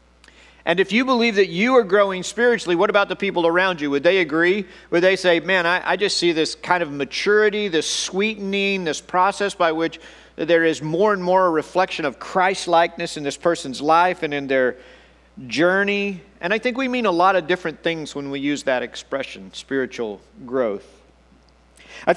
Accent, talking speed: American, 190 wpm